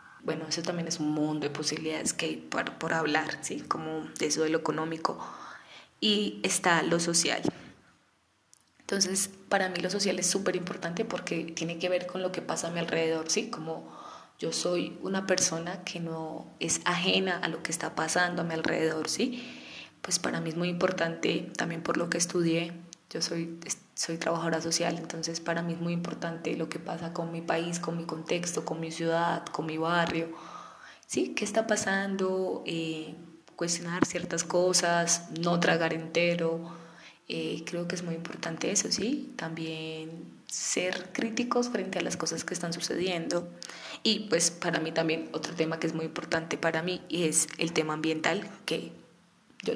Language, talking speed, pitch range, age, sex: Spanish, 180 wpm, 165-185 Hz, 20-39, female